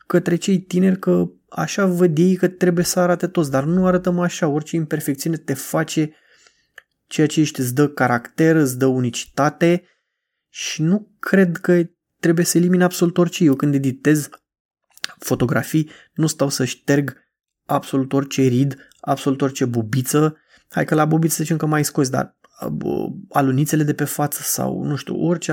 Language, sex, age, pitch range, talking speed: Romanian, male, 20-39, 135-170 Hz, 160 wpm